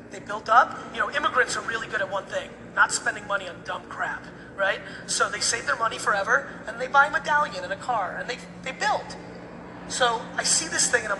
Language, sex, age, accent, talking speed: English, male, 30-49, American, 235 wpm